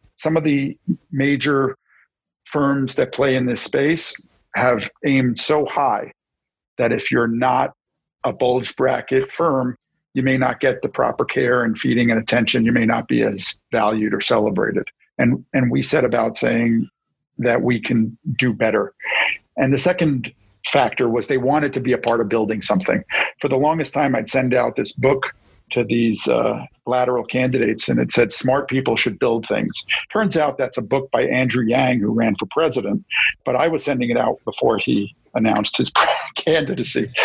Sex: male